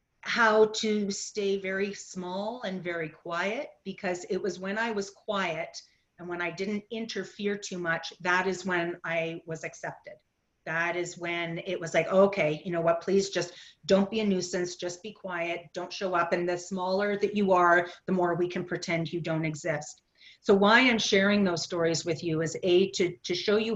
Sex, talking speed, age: female, 195 wpm, 40-59